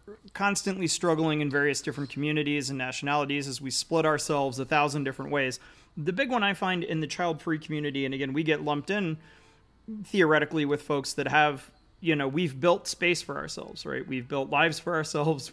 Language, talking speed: English, 195 wpm